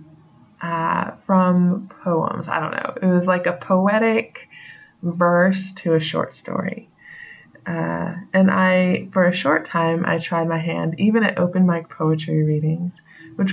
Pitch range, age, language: 160-185 Hz, 20-39, English